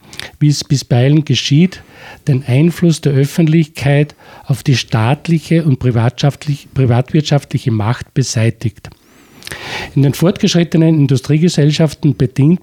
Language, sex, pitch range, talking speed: German, male, 130-160 Hz, 100 wpm